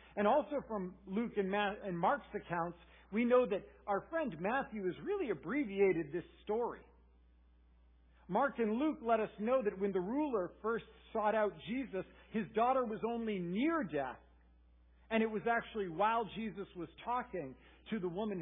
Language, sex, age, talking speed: English, male, 50-69, 160 wpm